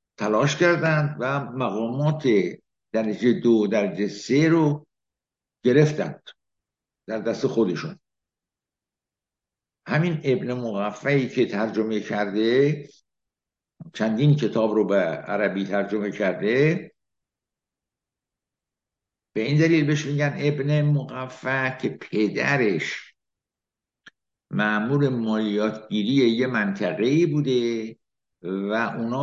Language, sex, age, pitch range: Persian, male, 60-79, 110-145 Hz